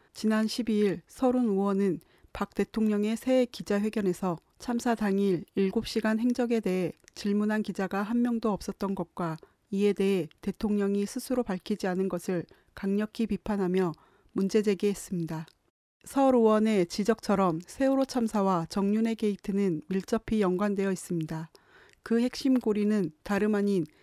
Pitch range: 185-225 Hz